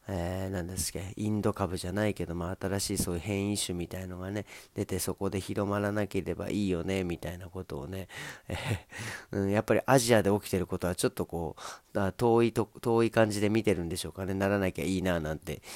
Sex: male